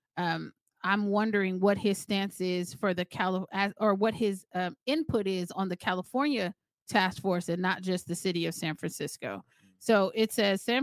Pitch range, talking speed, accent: 180-225 Hz, 185 wpm, American